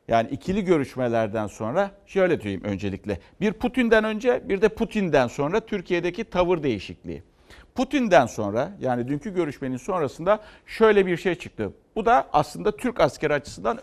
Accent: native